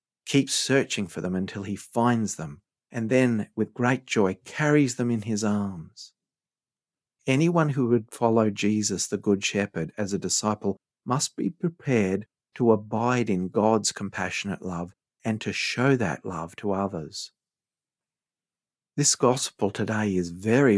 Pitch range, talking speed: 95-125 Hz, 145 wpm